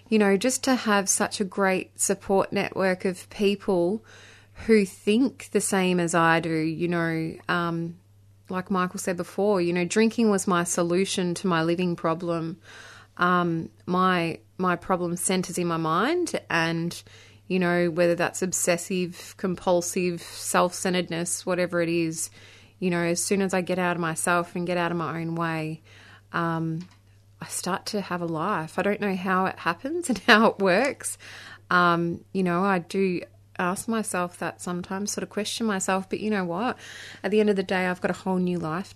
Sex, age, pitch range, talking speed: female, 20-39, 165-195 Hz, 180 wpm